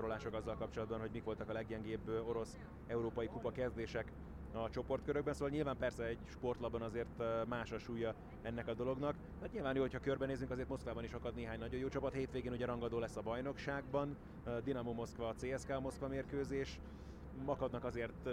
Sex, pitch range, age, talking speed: male, 115-130 Hz, 30-49, 165 wpm